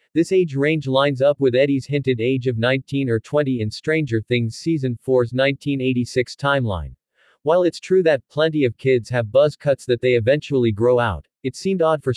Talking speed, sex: 190 wpm, male